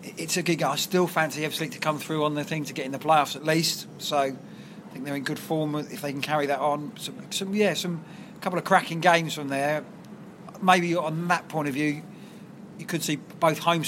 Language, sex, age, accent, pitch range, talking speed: English, male, 30-49, British, 140-180 Hz, 240 wpm